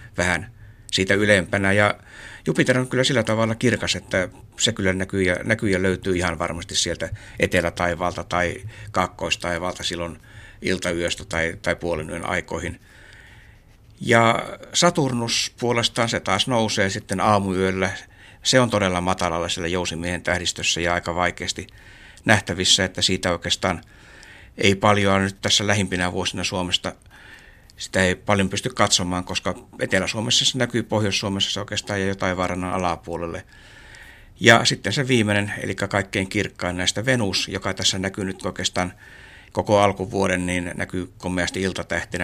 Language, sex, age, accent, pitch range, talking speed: Finnish, male, 60-79, native, 90-105 Hz, 135 wpm